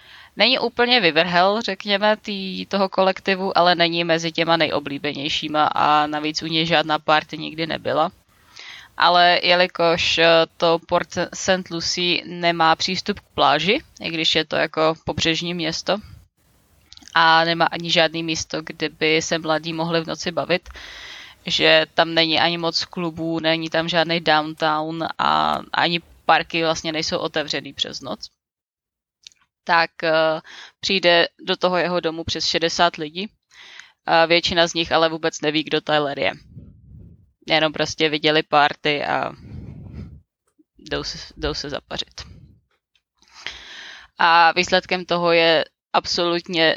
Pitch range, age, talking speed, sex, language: 160-175 Hz, 20-39, 130 wpm, female, Czech